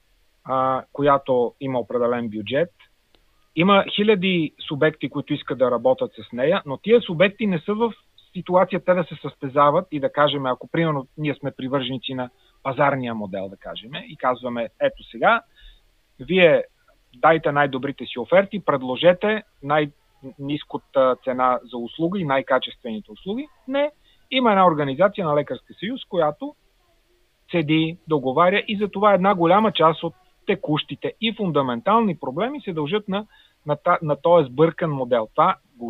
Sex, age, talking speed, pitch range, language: male, 40-59, 140 wpm, 130-185 Hz, Bulgarian